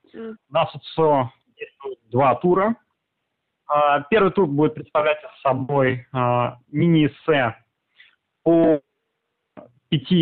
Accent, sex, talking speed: native, male, 75 wpm